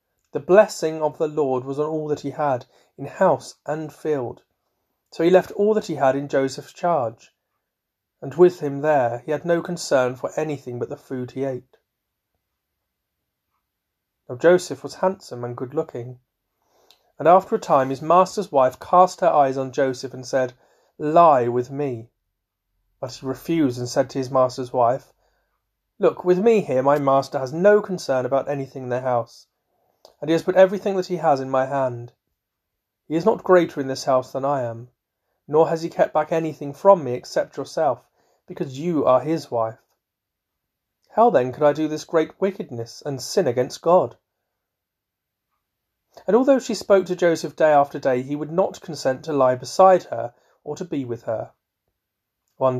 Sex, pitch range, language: male, 125-165 Hz, English